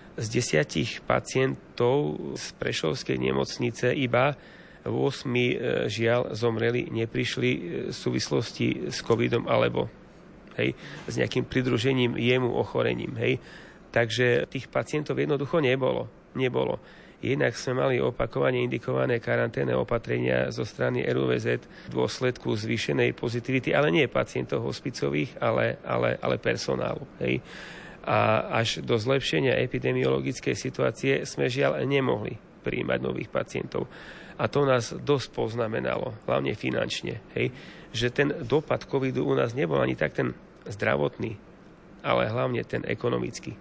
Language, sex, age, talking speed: Slovak, male, 40-59, 120 wpm